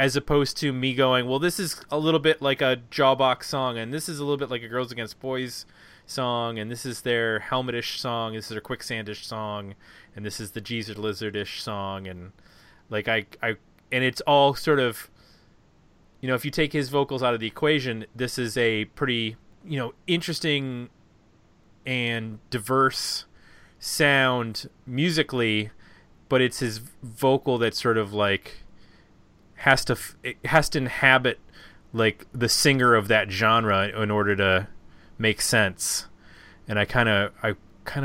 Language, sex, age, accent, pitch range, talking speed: English, male, 30-49, American, 105-135 Hz, 170 wpm